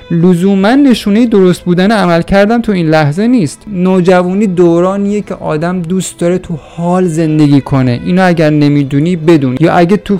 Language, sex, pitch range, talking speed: Persian, male, 155-220 Hz, 160 wpm